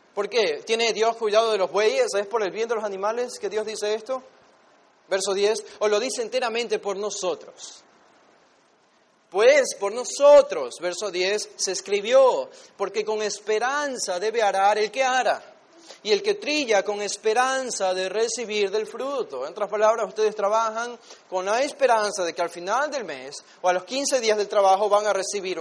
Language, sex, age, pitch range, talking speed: Spanish, male, 30-49, 195-255 Hz, 180 wpm